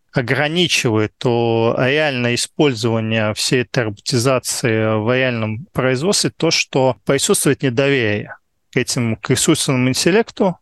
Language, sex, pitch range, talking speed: Russian, male, 120-150 Hz, 105 wpm